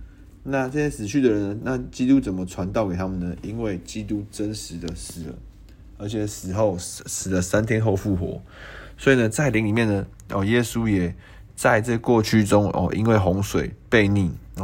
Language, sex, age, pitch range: Chinese, male, 20-39, 95-115 Hz